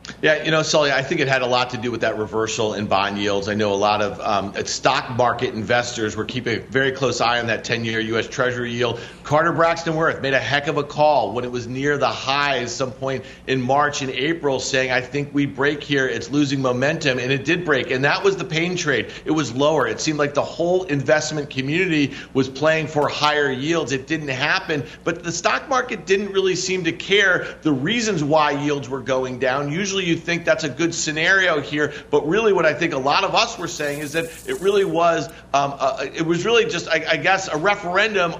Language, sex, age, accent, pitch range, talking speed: English, male, 50-69, American, 135-170 Hz, 230 wpm